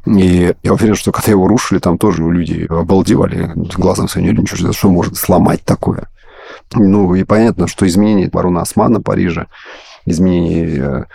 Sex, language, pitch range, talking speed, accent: male, Russian, 90-100 Hz, 150 wpm, native